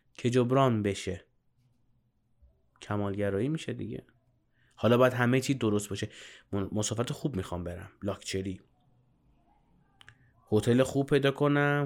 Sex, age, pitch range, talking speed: male, 30-49, 110-140 Hz, 105 wpm